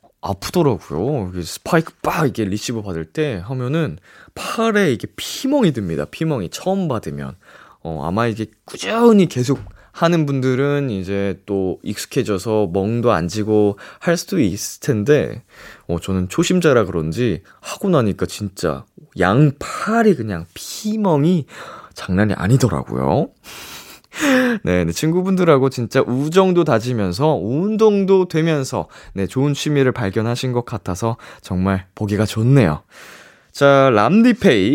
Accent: native